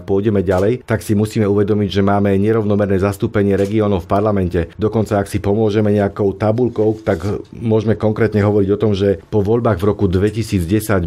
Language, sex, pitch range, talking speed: Slovak, male, 95-110 Hz, 170 wpm